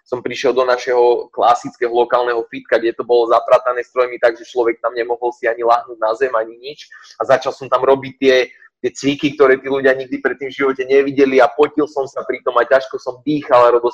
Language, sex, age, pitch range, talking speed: Slovak, male, 20-39, 120-150 Hz, 210 wpm